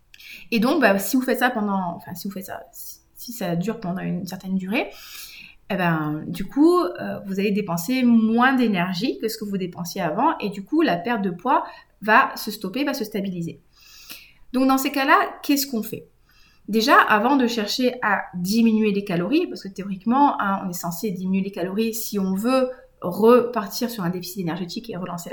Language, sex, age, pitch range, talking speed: French, female, 30-49, 195-250 Hz, 195 wpm